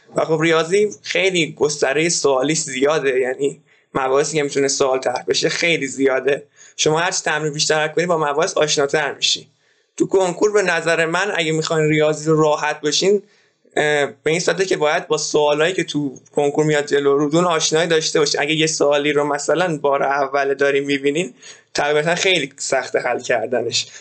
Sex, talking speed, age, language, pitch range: male, 170 wpm, 20-39, Persian, 140-185 Hz